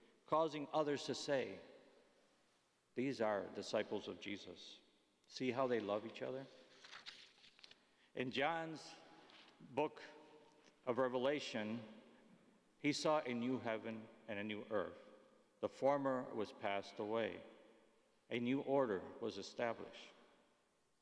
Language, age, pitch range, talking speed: English, 50-69, 115-145 Hz, 110 wpm